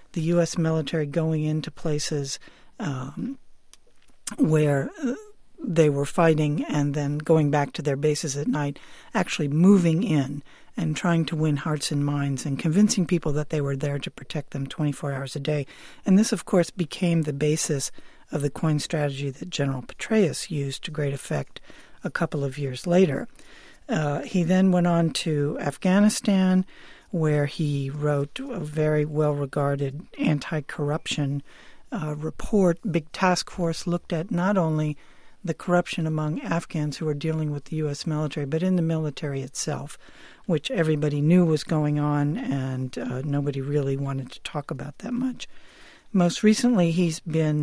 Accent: American